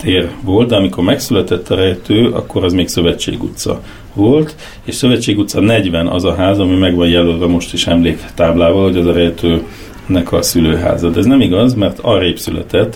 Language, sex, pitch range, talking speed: Hungarian, male, 85-110 Hz, 185 wpm